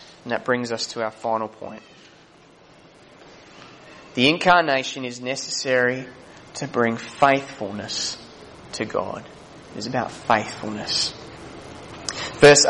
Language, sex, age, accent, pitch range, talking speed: English, male, 20-39, Australian, 130-175 Hz, 105 wpm